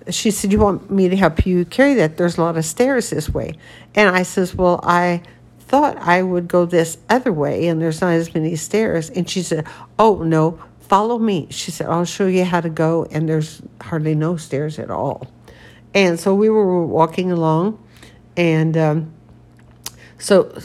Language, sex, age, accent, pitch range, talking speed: English, female, 60-79, American, 155-195 Hz, 190 wpm